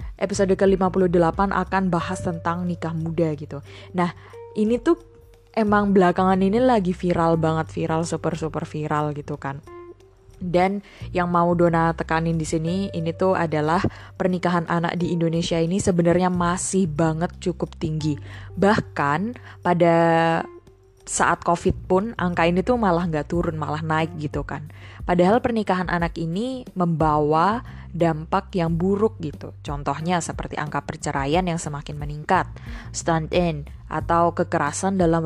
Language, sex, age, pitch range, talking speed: Indonesian, female, 20-39, 150-185 Hz, 135 wpm